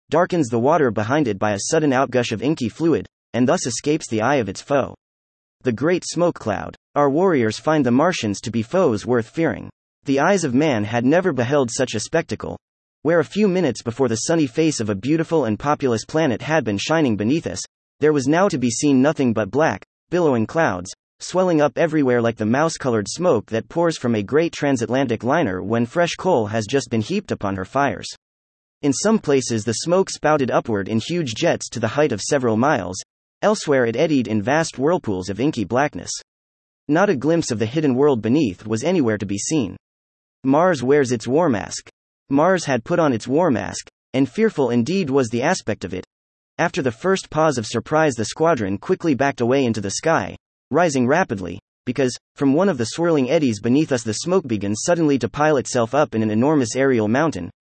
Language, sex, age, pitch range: English, male, 30-49, 110-155 Hz